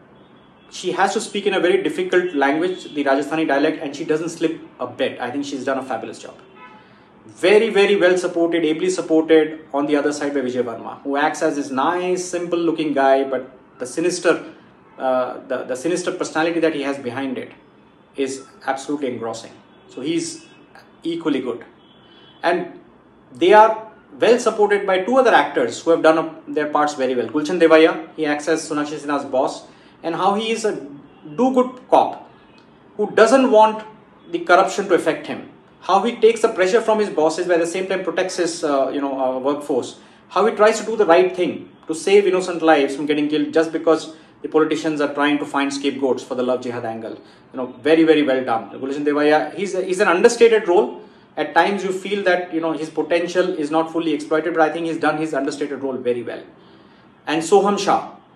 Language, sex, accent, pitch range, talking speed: English, male, Indian, 140-185 Hz, 200 wpm